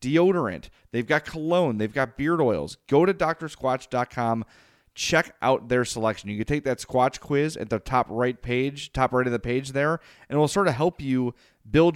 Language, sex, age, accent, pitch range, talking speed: English, male, 30-49, American, 110-140 Hz, 200 wpm